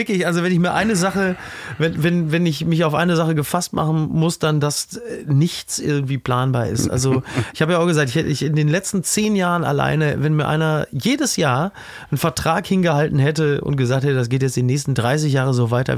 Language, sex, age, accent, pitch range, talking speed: German, male, 30-49, German, 135-175 Hz, 215 wpm